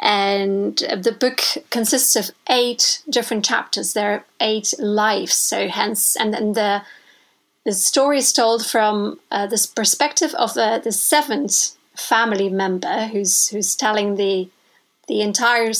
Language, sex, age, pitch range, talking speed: English, female, 30-49, 210-260 Hz, 140 wpm